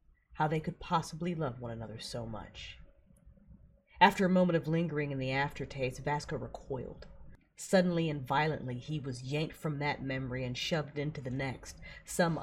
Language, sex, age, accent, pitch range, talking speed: English, female, 30-49, American, 125-160 Hz, 165 wpm